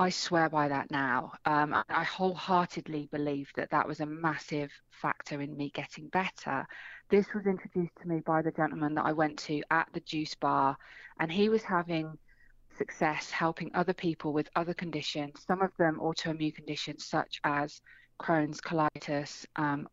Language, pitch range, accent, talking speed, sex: English, 150-175 Hz, British, 170 wpm, female